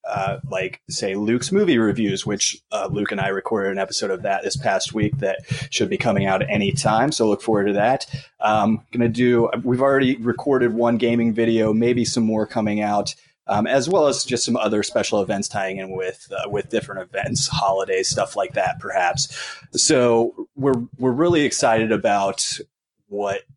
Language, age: English, 30-49